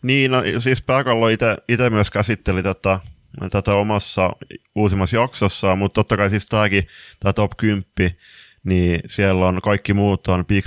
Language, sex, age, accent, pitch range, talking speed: Finnish, male, 20-39, native, 90-105 Hz, 155 wpm